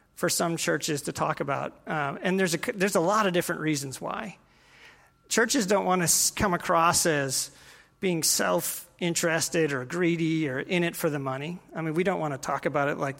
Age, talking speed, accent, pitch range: 40-59, 195 wpm, American, 155-185 Hz